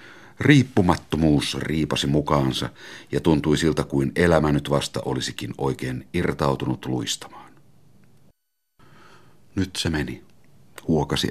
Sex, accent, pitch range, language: male, native, 65-80 Hz, Finnish